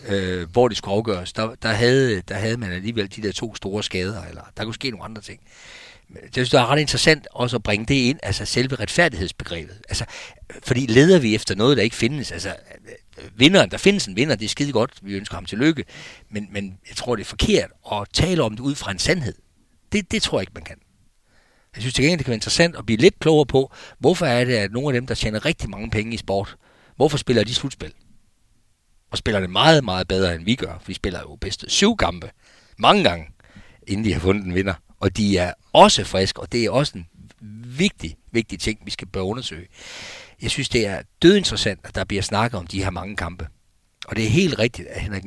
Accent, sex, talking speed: native, male, 225 wpm